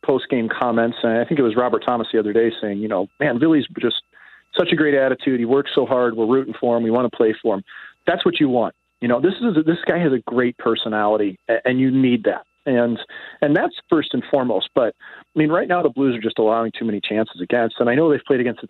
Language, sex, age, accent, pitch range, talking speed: English, male, 40-59, American, 115-140 Hz, 265 wpm